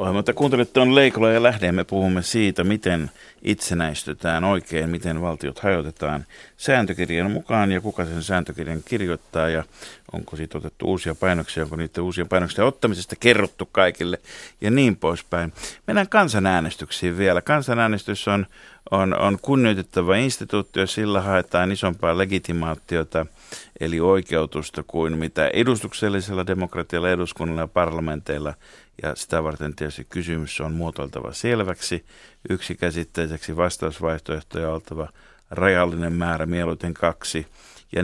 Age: 50-69